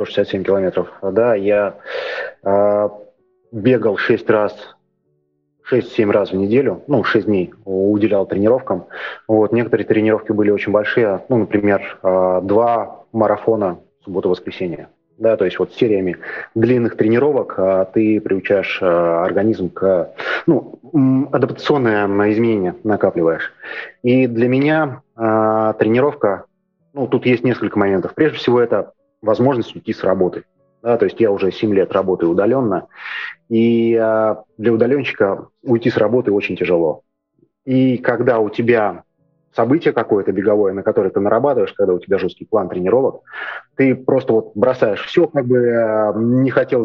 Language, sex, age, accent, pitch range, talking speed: Russian, male, 30-49, native, 100-130 Hz, 135 wpm